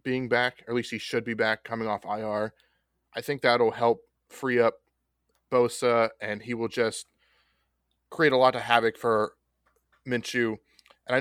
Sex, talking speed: male, 170 wpm